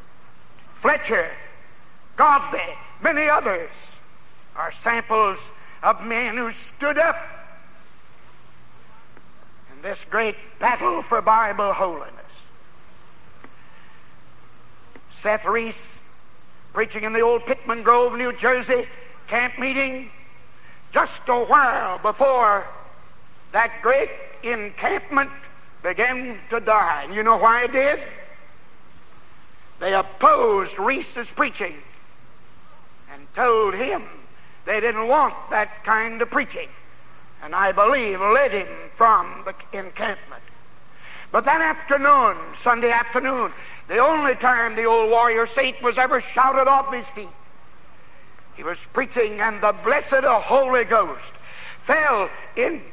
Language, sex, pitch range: English, male, 225-275 Hz